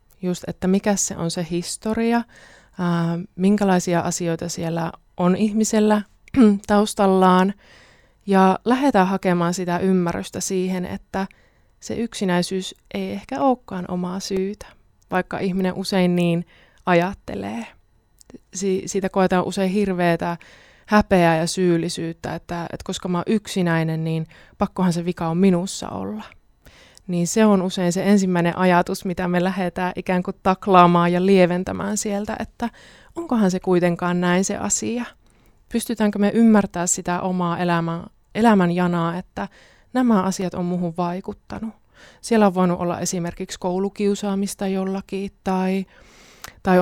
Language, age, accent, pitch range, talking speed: Finnish, 20-39, native, 175-200 Hz, 125 wpm